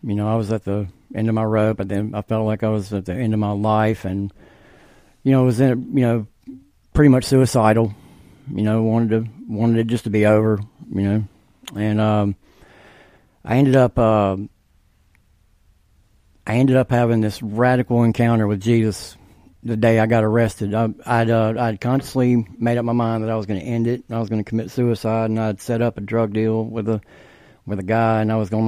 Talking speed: 220 wpm